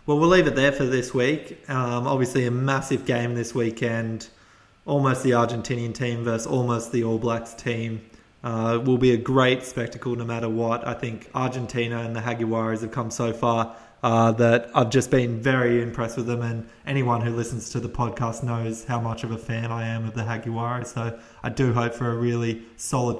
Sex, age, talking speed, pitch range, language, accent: male, 20-39, 205 wpm, 115-125 Hz, English, Australian